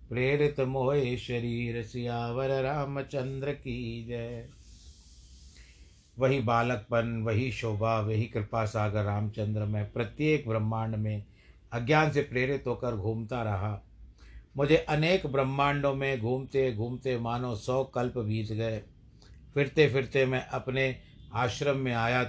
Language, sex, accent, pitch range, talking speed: Hindi, male, native, 105-125 Hz, 115 wpm